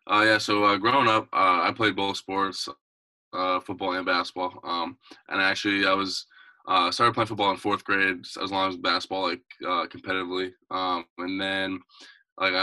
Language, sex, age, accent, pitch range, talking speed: English, male, 20-39, American, 95-100 Hz, 185 wpm